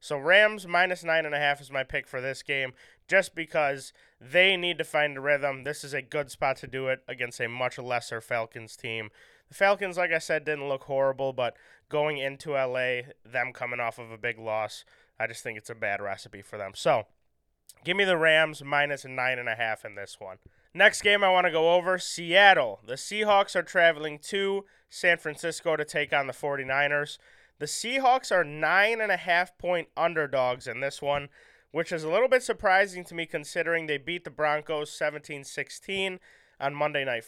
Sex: male